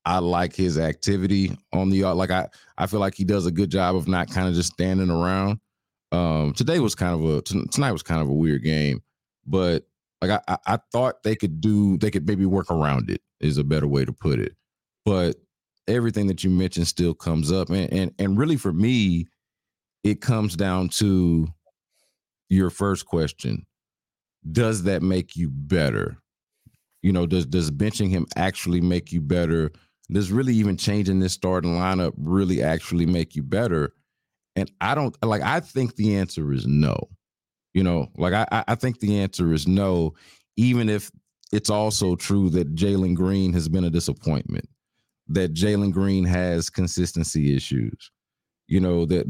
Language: English